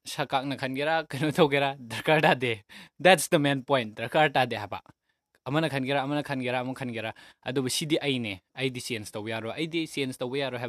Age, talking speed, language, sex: 20-39, 100 wpm, English, male